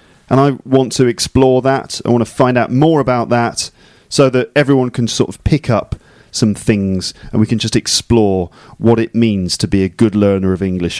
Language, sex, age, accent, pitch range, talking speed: English, male, 40-59, British, 105-140 Hz, 215 wpm